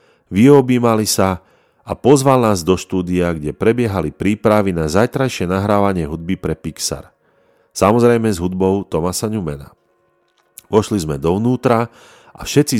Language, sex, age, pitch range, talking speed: Slovak, male, 40-59, 90-135 Hz, 120 wpm